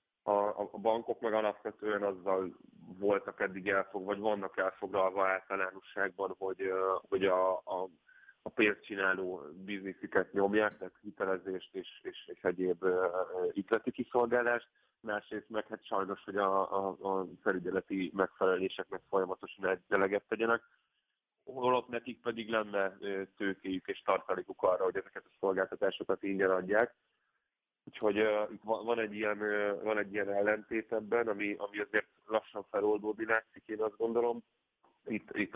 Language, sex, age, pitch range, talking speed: Hungarian, male, 30-49, 95-110 Hz, 130 wpm